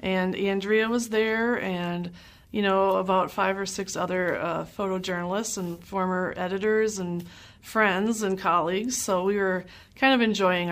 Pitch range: 180-215 Hz